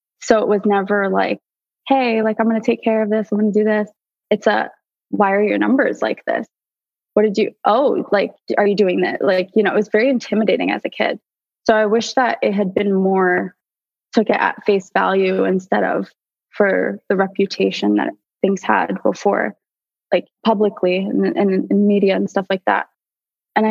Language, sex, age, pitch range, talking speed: English, female, 20-39, 195-215 Hz, 200 wpm